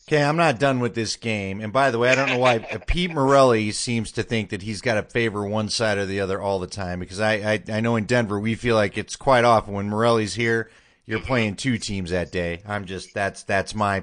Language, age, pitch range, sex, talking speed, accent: English, 30-49, 100-120 Hz, male, 255 wpm, American